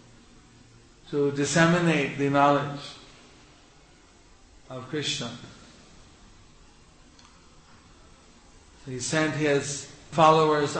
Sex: male